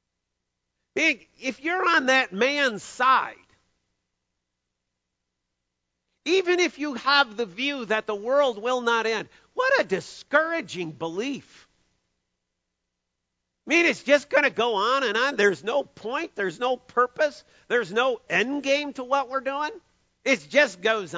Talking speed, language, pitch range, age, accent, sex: 140 wpm, English, 195-300 Hz, 50-69, American, male